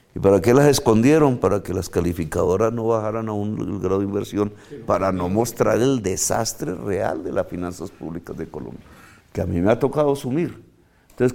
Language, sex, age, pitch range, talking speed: Spanish, male, 50-69, 90-120 Hz, 190 wpm